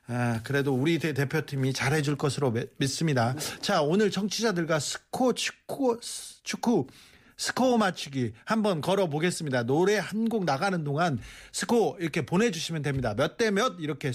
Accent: native